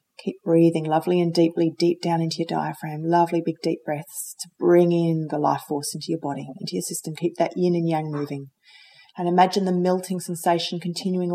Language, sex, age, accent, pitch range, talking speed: English, female, 30-49, Australian, 160-185 Hz, 200 wpm